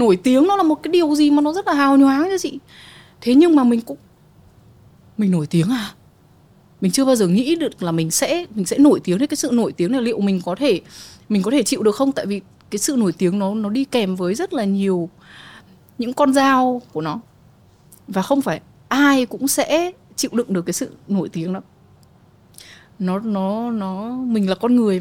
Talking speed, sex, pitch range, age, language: 225 wpm, female, 175-255 Hz, 20-39, Vietnamese